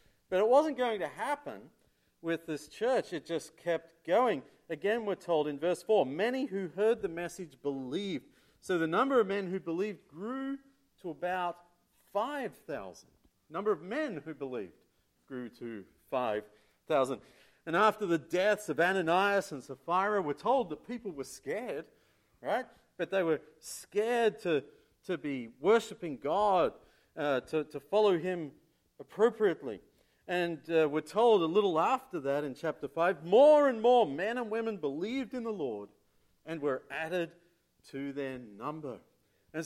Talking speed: 155 wpm